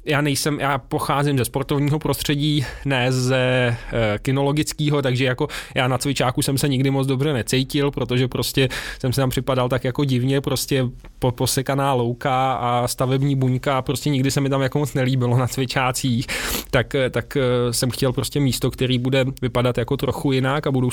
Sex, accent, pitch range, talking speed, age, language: male, native, 120-135 Hz, 170 wpm, 20-39, Czech